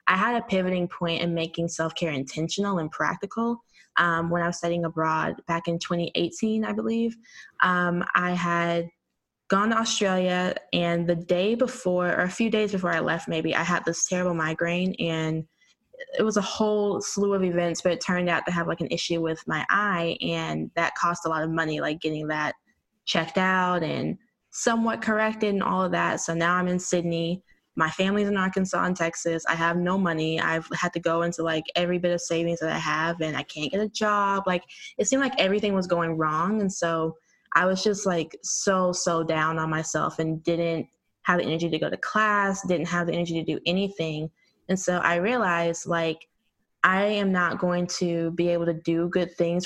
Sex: female